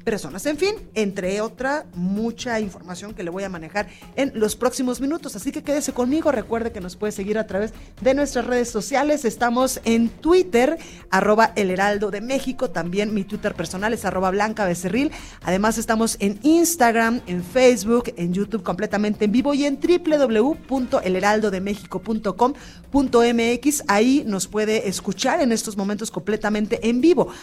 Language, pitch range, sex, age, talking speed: Spanish, 200-260 Hz, female, 30-49, 160 wpm